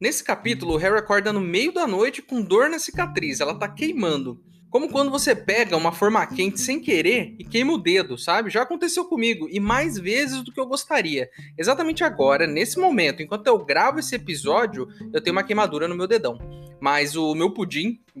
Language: Portuguese